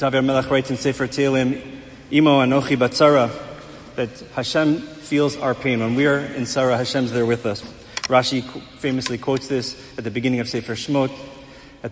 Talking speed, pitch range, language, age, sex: 170 wpm, 130-165 Hz, English, 40-59, male